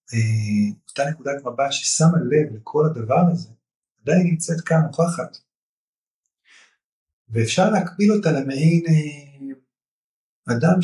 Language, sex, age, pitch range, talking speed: Hebrew, male, 30-49, 115-160 Hz, 100 wpm